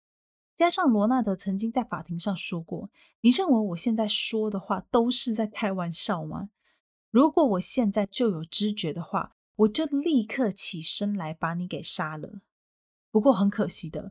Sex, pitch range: female, 180-250 Hz